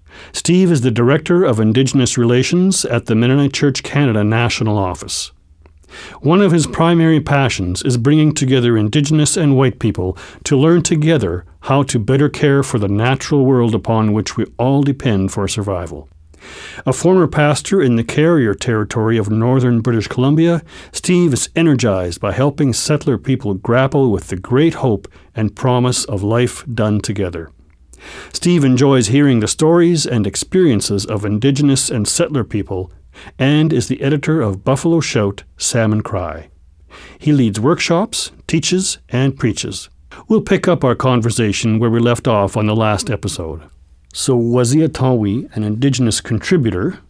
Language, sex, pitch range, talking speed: English, male, 105-145 Hz, 150 wpm